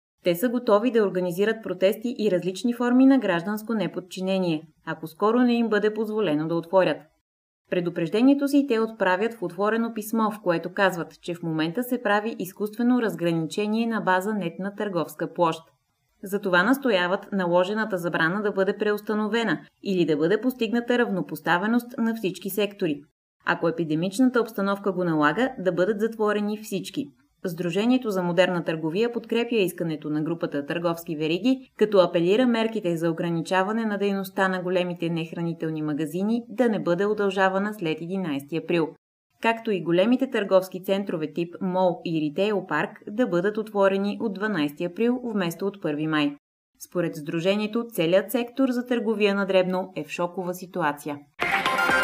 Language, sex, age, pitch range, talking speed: Bulgarian, female, 20-39, 170-215 Hz, 145 wpm